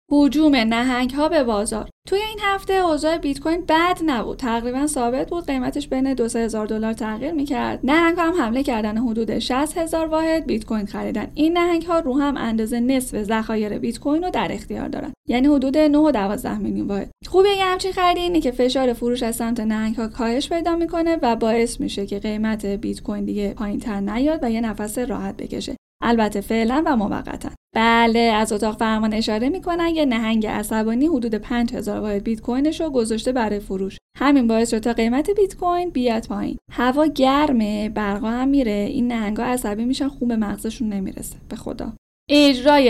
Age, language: 10-29, Persian